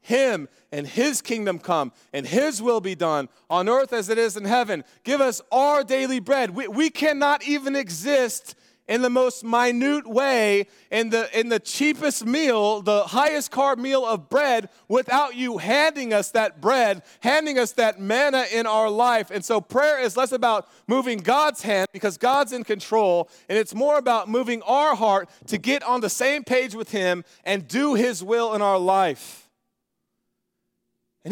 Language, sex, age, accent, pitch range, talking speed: English, male, 30-49, American, 180-255 Hz, 180 wpm